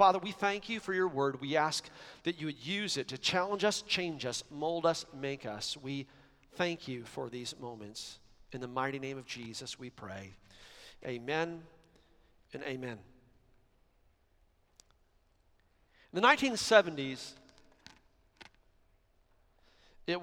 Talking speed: 130 wpm